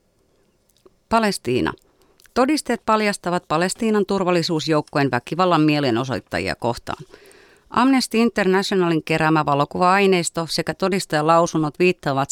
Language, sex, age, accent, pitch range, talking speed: Finnish, female, 30-49, native, 145-185 Hz, 75 wpm